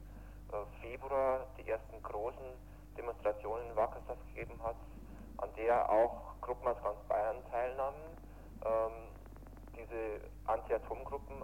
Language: German